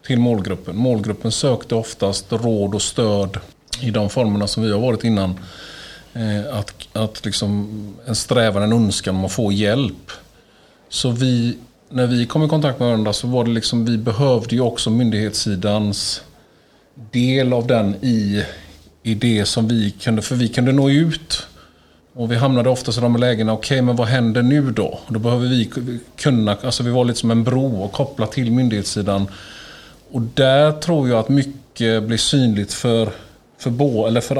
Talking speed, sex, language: 175 wpm, male, Swedish